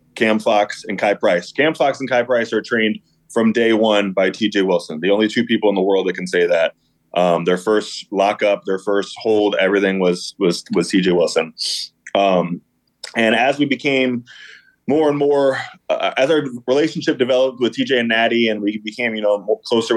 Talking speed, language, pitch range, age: 195 wpm, English, 100-120 Hz, 20-39